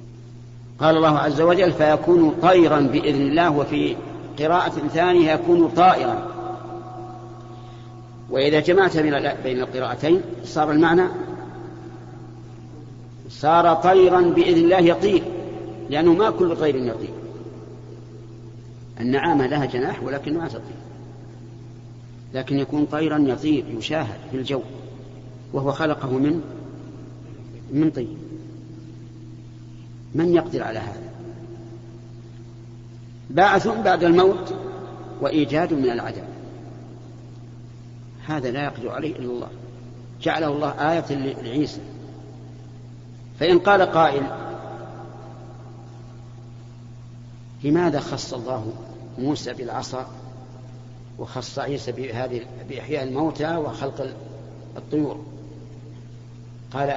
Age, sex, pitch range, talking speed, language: 50-69, male, 120-150 Hz, 85 wpm, Arabic